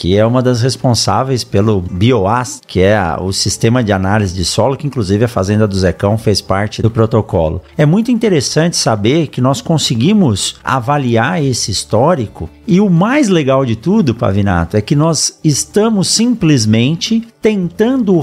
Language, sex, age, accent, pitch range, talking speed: Portuguese, male, 50-69, Brazilian, 115-175 Hz, 160 wpm